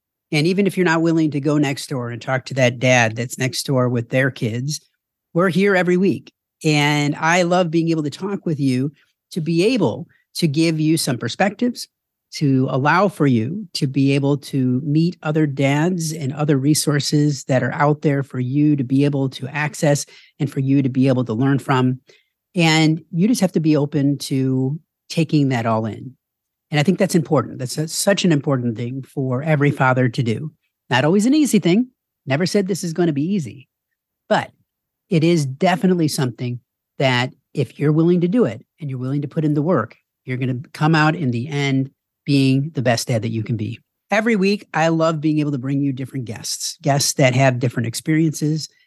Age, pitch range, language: 40-59, 130-165 Hz, English